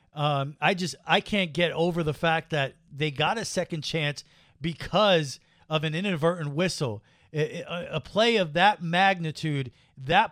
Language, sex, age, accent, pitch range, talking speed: English, male, 40-59, American, 150-190 Hz, 165 wpm